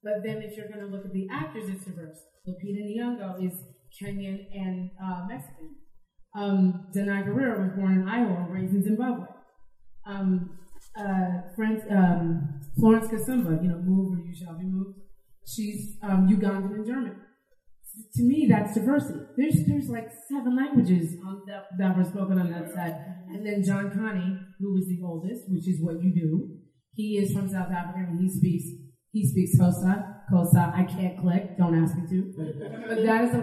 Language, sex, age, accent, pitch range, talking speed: English, female, 30-49, American, 180-225 Hz, 180 wpm